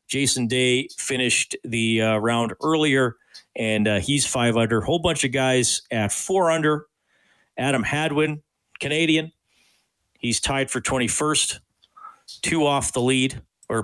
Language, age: English, 40-59